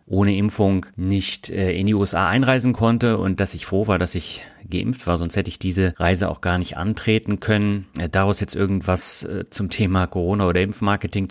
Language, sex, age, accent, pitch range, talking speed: German, male, 30-49, German, 95-115 Hz, 200 wpm